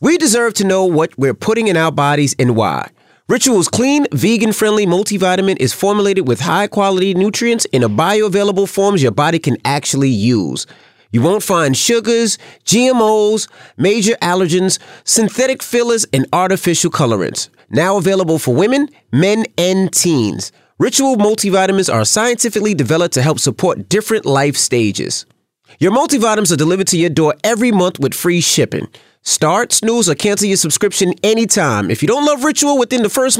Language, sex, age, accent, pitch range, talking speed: English, male, 30-49, American, 160-225 Hz, 155 wpm